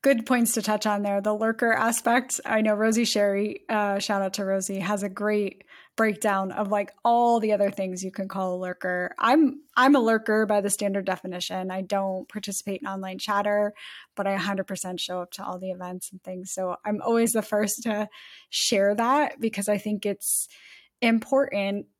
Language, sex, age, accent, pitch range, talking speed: English, female, 10-29, American, 190-225 Hz, 195 wpm